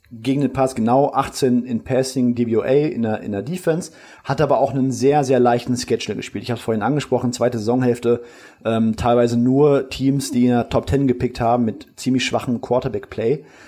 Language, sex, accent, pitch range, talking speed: German, male, German, 120-135 Hz, 185 wpm